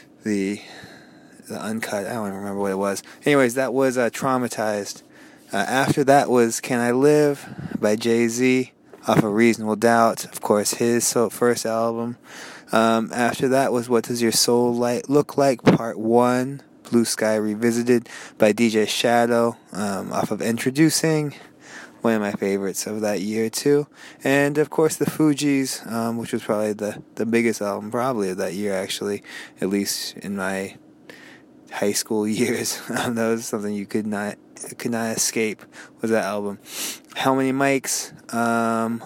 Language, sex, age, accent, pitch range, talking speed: English, male, 20-39, American, 105-125 Hz, 160 wpm